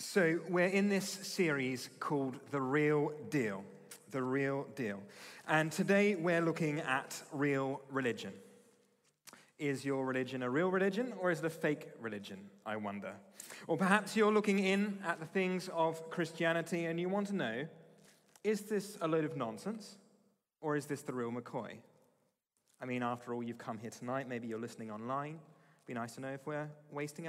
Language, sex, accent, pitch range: English, male, British, 130-175 Hz